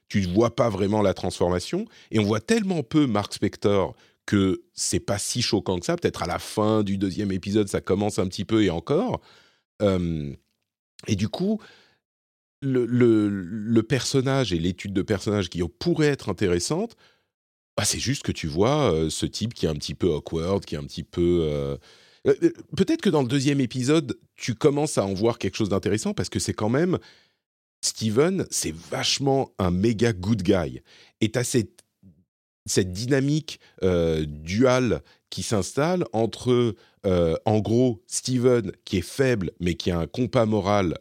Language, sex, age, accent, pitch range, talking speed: French, male, 40-59, French, 90-125 Hz, 175 wpm